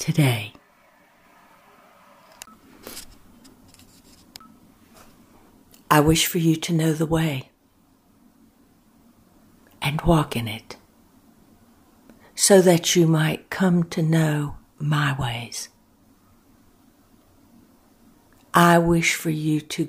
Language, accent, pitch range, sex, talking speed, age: English, American, 140-170 Hz, female, 80 wpm, 60-79